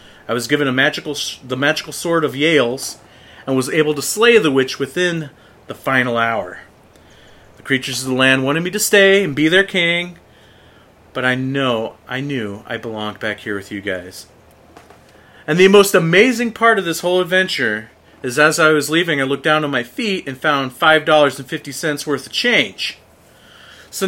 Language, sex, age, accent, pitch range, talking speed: English, male, 40-59, American, 130-185 Hz, 180 wpm